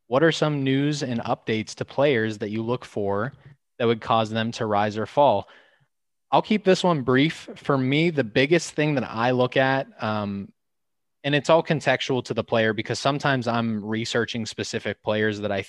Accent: American